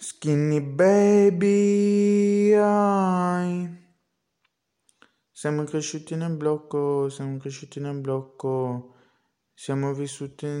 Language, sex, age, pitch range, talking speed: Italian, male, 20-39, 125-135 Hz, 70 wpm